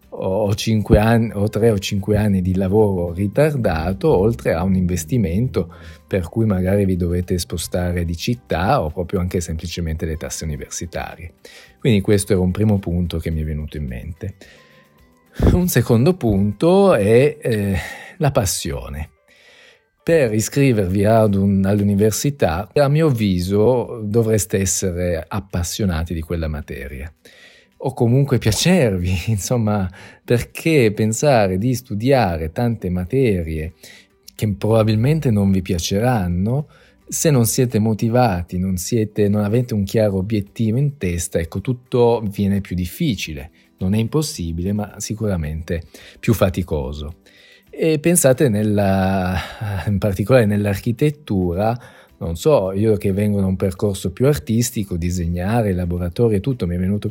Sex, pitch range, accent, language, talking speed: male, 90-115 Hz, native, Italian, 130 wpm